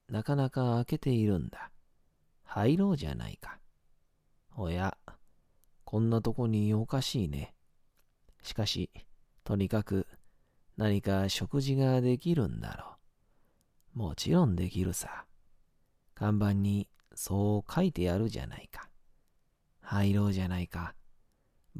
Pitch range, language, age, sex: 95-115 Hz, Japanese, 40-59, male